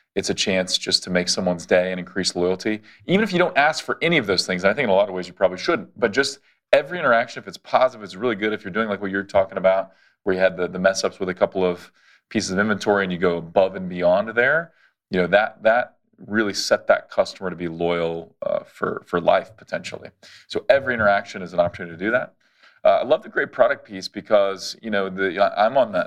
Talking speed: 260 wpm